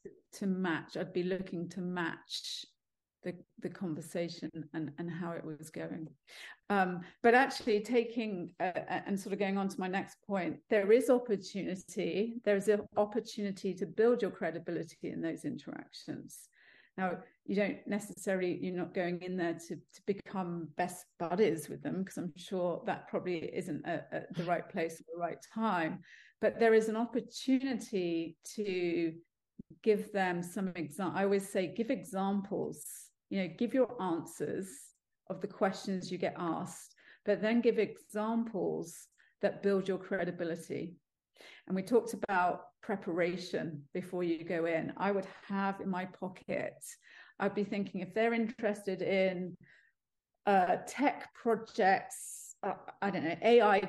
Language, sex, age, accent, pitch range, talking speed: English, female, 40-59, British, 175-215 Hz, 155 wpm